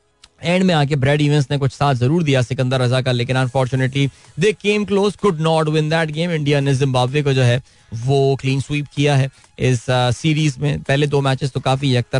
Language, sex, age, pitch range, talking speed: Hindi, male, 20-39, 125-165 Hz, 150 wpm